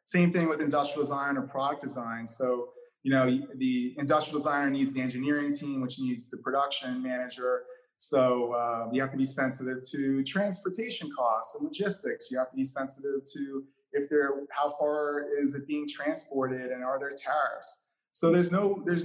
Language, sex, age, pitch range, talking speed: English, male, 30-49, 130-170 Hz, 175 wpm